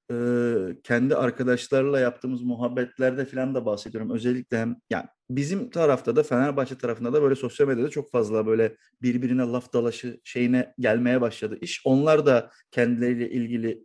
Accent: native